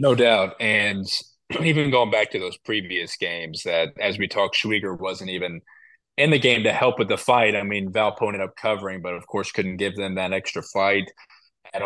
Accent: American